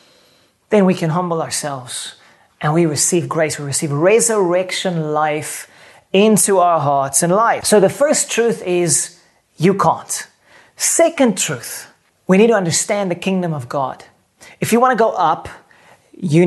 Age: 30-49